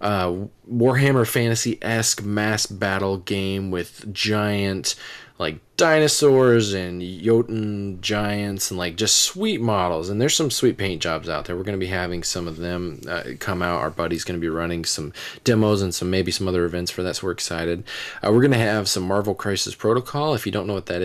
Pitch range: 90-110 Hz